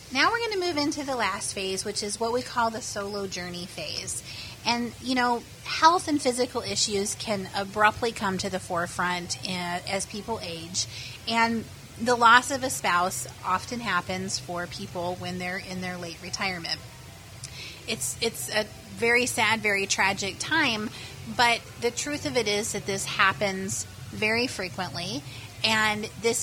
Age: 30-49